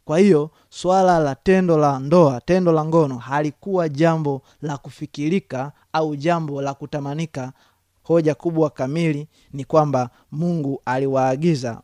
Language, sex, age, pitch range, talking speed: Swahili, male, 30-49, 125-155 Hz, 125 wpm